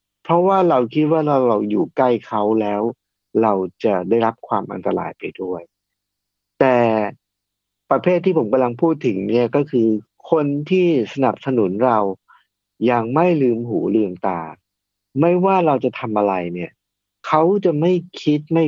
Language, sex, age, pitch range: Thai, male, 60-79, 100-135 Hz